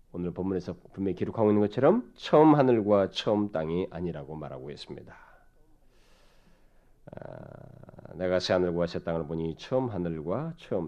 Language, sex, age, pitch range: Korean, male, 40-59, 85-130 Hz